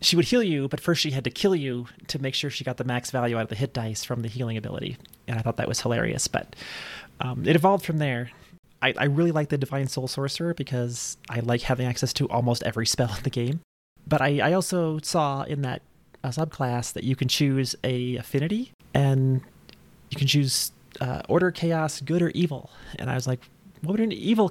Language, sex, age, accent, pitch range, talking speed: English, male, 30-49, American, 125-155 Hz, 230 wpm